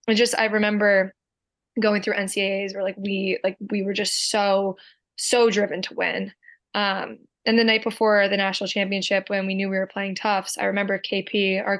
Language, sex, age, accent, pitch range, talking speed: English, female, 20-39, American, 195-215 Hz, 195 wpm